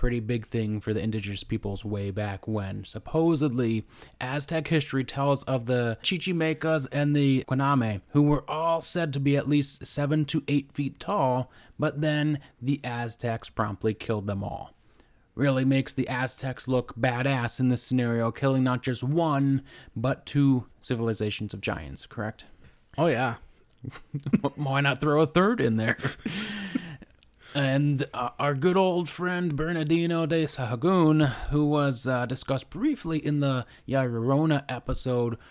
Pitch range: 115-150 Hz